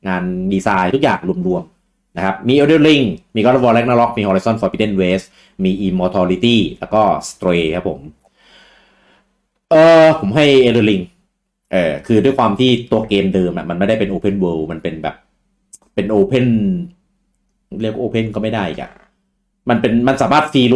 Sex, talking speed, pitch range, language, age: male, 60 wpm, 90-135 Hz, English, 30-49